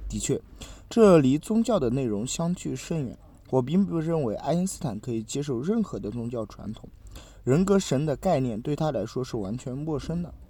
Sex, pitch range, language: male, 110-180 Hz, Chinese